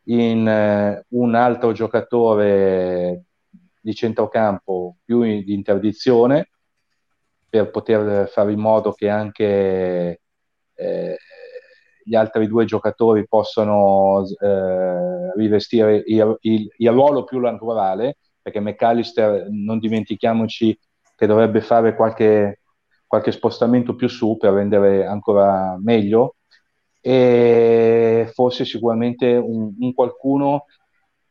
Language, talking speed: Italian, 100 wpm